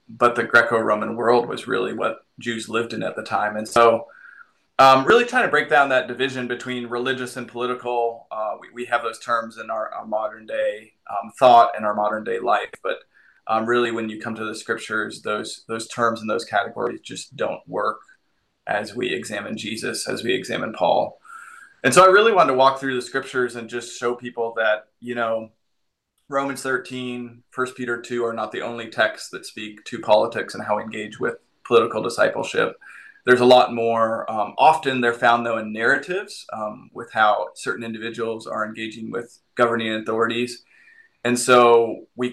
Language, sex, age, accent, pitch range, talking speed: English, male, 20-39, American, 115-125 Hz, 190 wpm